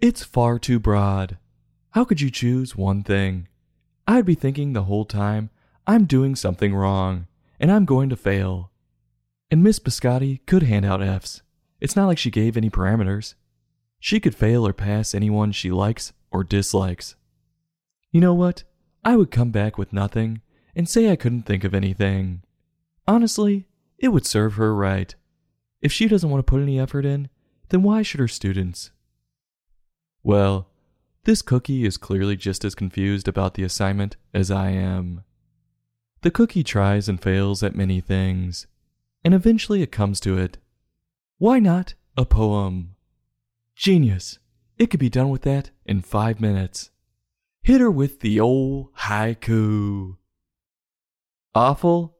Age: 20-39